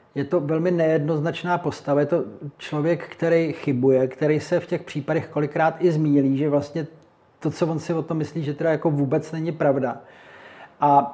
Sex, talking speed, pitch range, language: male, 185 wpm, 140-165 Hz, Czech